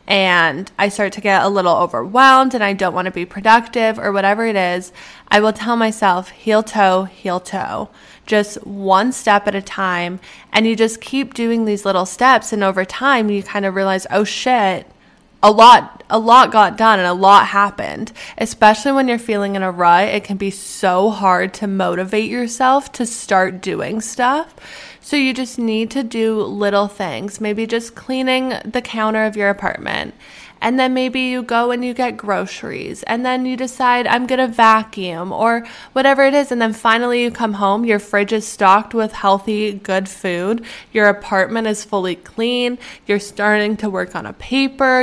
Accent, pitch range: American, 195-240 Hz